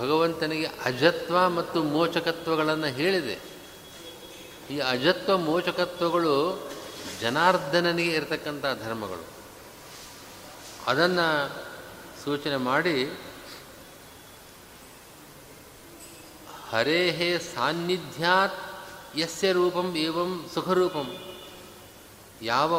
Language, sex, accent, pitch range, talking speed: Kannada, male, native, 135-175 Hz, 55 wpm